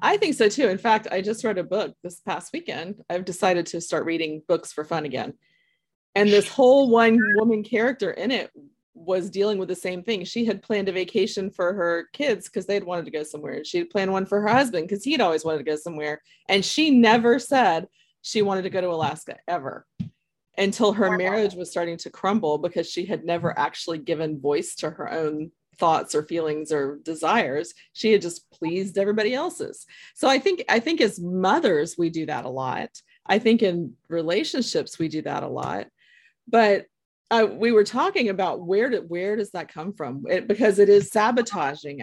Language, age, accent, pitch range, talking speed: English, 30-49, American, 165-220 Hz, 205 wpm